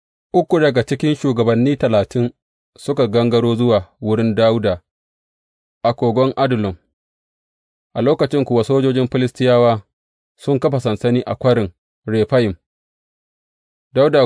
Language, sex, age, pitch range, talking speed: English, male, 30-49, 95-125 Hz, 100 wpm